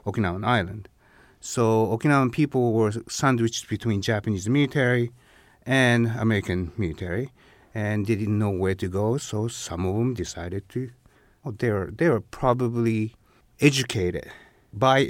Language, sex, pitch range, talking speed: English, male, 95-120 Hz, 135 wpm